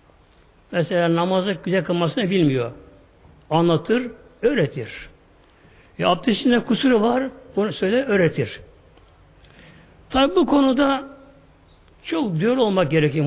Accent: native